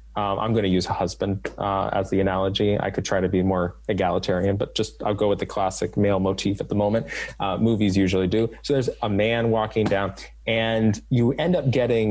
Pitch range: 90-120 Hz